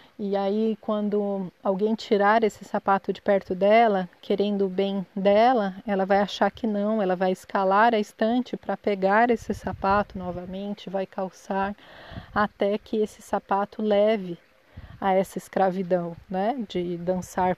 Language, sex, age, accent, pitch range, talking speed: Portuguese, female, 20-39, Brazilian, 190-215 Hz, 145 wpm